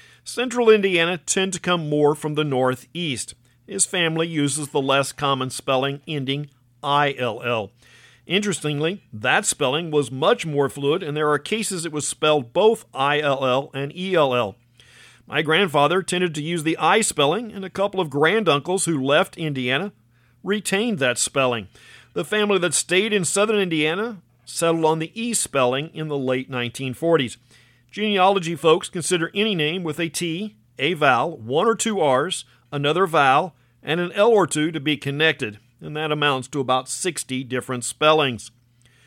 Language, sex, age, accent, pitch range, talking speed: English, male, 50-69, American, 130-185 Hz, 160 wpm